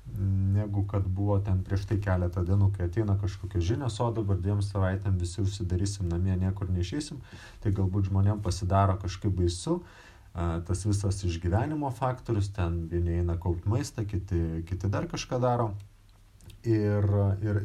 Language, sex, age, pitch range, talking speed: English, male, 30-49, 95-110 Hz, 145 wpm